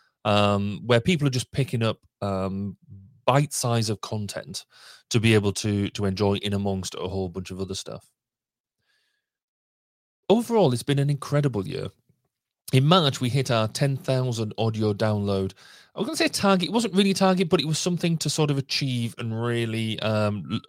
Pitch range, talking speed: 105-135 Hz, 175 wpm